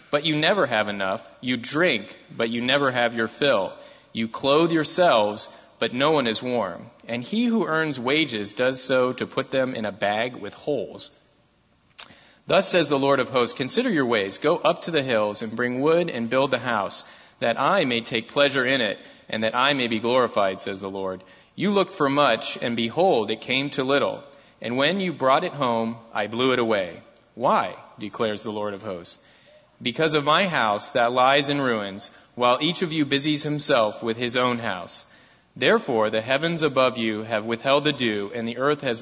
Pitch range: 115-140 Hz